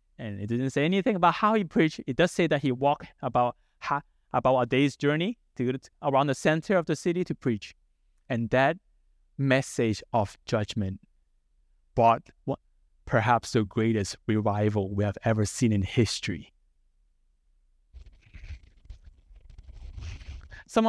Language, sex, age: English, male, 20-39